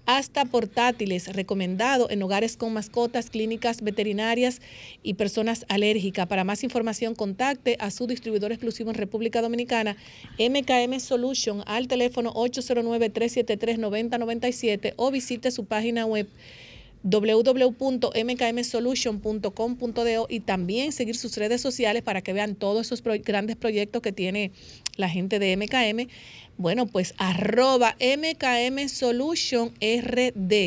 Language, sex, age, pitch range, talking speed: Spanish, female, 40-59, 205-240 Hz, 110 wpm